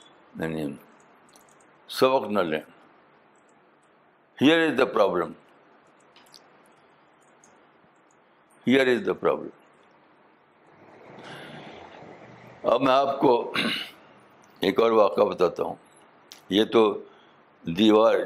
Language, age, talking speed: Urdu, 60-79, 65 wpm